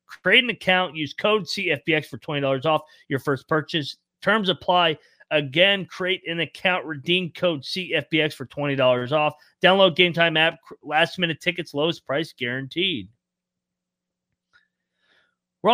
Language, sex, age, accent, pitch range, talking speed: English, male, 30-49, American, 140-180 Hz, 125 wpm